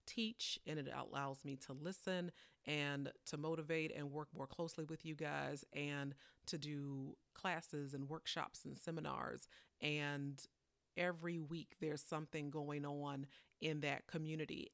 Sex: female